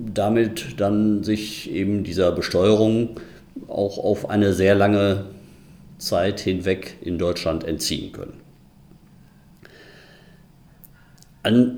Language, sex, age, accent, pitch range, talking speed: German, male, 50-69, German, 85-115 Hz, 90 wpm